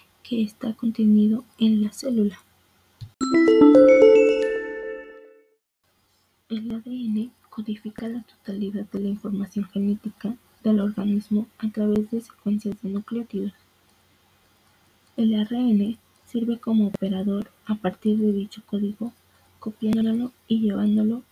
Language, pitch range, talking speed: Spanish, 200-235 Hz, 100 wpm